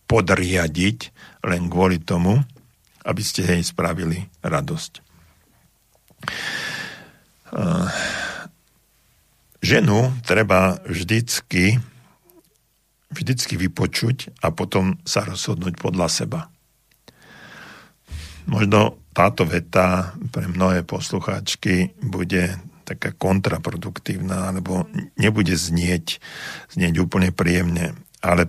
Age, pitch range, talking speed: 50-69, 90-110 Hz, 75 wpm